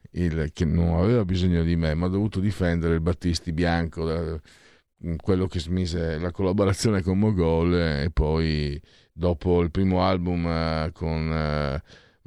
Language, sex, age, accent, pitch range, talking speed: Italian, male, 50-69, native, 85-115 Hz, 150 wpm